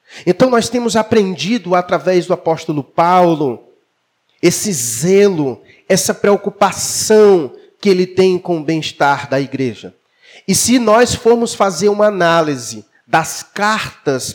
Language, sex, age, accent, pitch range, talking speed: Portuguese, male, 40-59, Brazilian, 170-230 Hz, 120 wpm